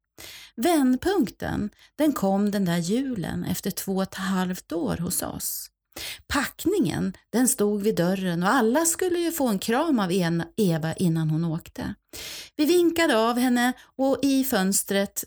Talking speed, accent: 150 wpm, native